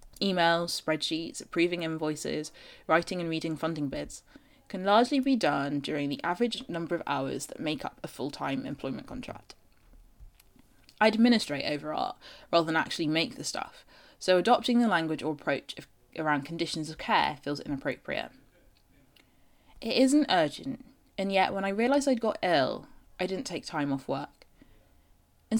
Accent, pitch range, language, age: British, 150-215 Hz, English, 20-39